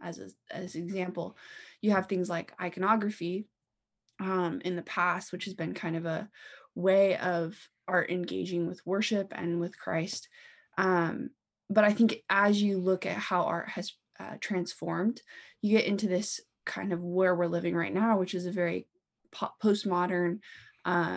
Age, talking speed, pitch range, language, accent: 20-39, 160 wpm, 175-210 Hz, English, American